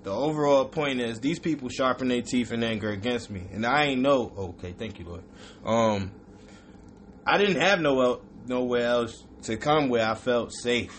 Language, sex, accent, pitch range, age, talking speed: English, male, American, 105-140 Hz, 20-39, 190 wpm